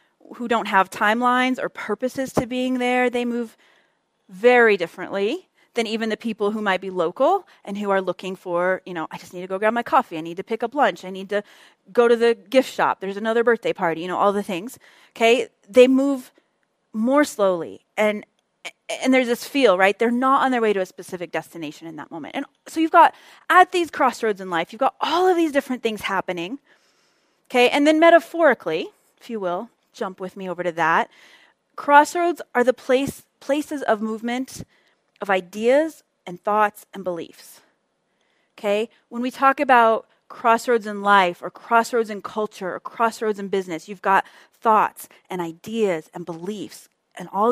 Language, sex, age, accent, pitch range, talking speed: English, female, 30-49, American, 190-255 Hz, 190 wpm